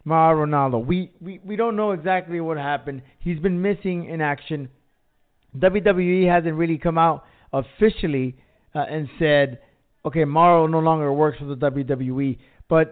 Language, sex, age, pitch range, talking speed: English, male, 30-49, 150-205 Hz, 155 wpm